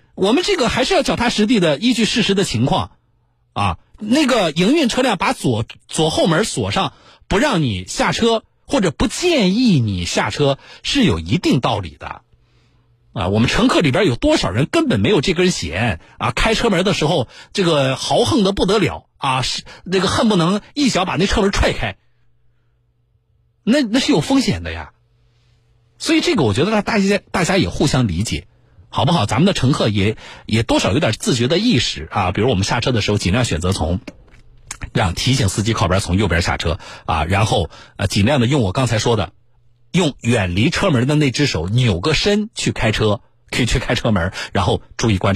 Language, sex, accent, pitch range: Chinese, male, native, 105-170 Hz